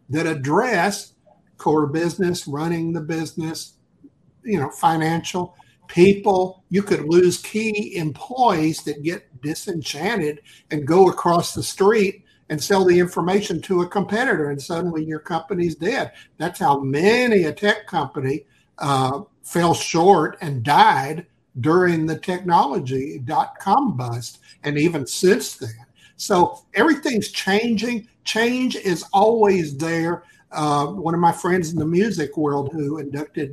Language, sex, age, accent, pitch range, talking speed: English, male, 60-79, American, 150-195 Hz, 130 wpm